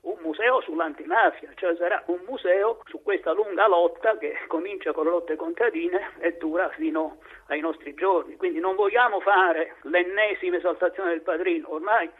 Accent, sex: native, male